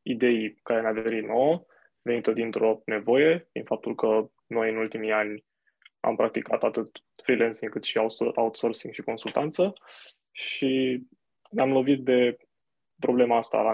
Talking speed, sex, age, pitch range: 140 wpm, male, 20-39, 115-135 Hz